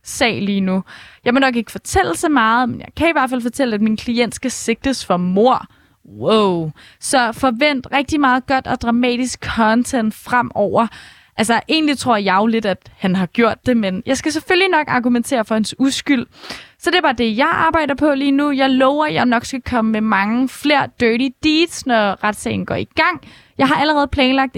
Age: 20-39